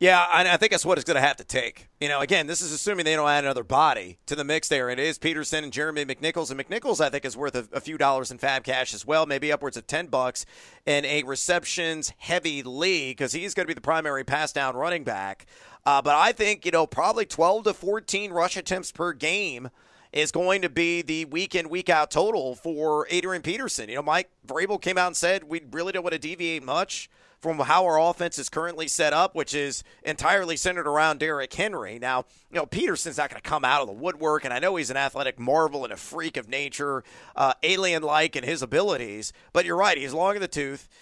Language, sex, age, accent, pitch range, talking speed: English, male, 40-59, American, 140-175 Hz, 235 wpm